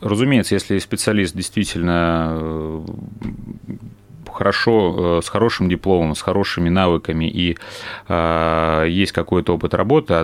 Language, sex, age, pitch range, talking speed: Russian, male, 30-49, 80-95 Hz, 100 wpm